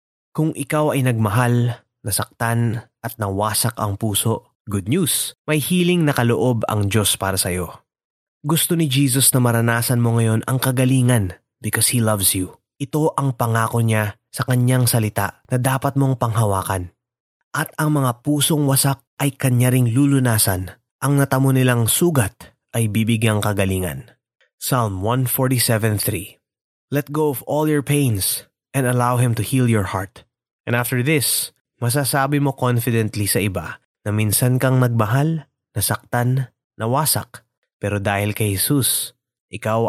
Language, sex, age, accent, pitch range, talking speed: Filipino, male, 20-39, native, 110-130 Hz, 140 wpm